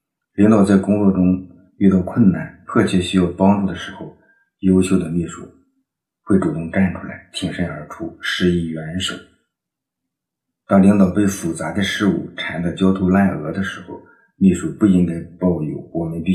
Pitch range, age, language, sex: 85-100 Hz, 50-69, Chinese, male